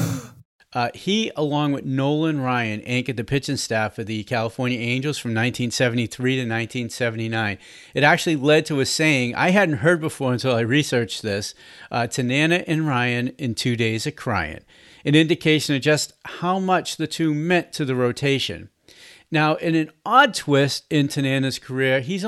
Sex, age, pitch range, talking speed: male, 40-59, 120-160 Hz, 165 wpm